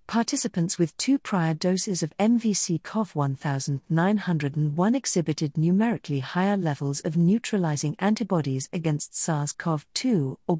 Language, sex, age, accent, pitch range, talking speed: English, female, 50-69, British, 150-205 Hz, 95 wpm